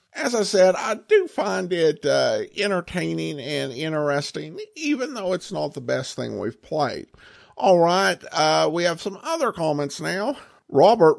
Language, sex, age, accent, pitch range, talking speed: English, male, 50-69, American, 130-175 Hz, 160 wpm